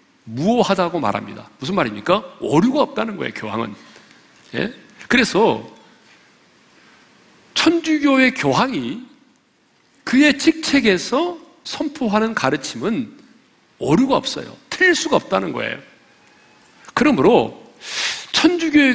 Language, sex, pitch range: Korean, male, 210-290 Hz